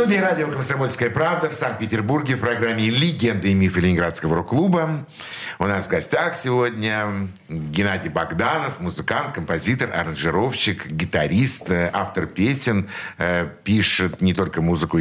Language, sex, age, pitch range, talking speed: Russian, male, 60-79, 95-135 Hz, 120 wpm